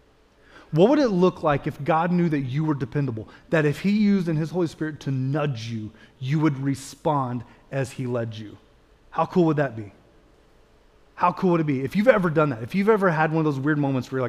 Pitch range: 135-165 Hz